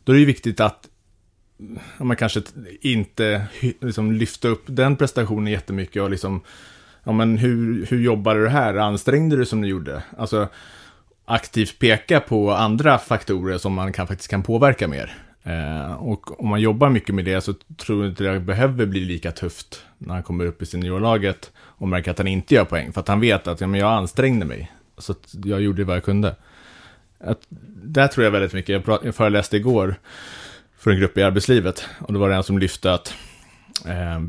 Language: English